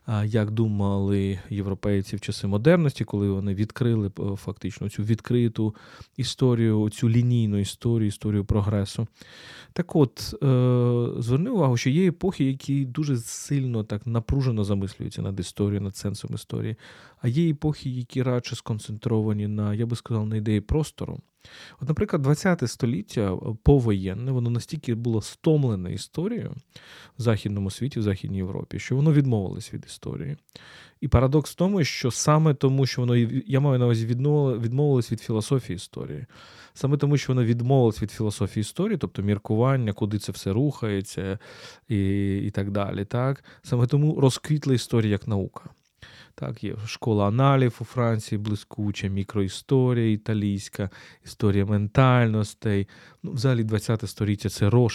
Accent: native